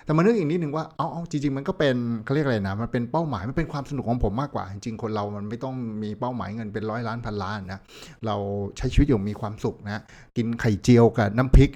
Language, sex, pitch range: Thai, male, 105-135 Hz